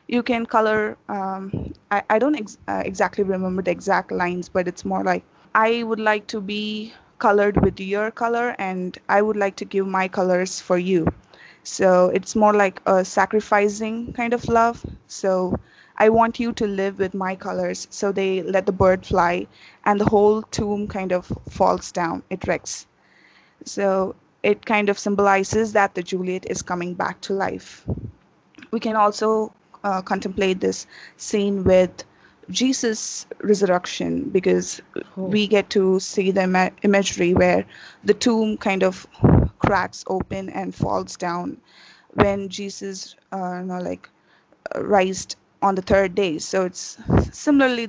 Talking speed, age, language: 155 wpm, 20-39, English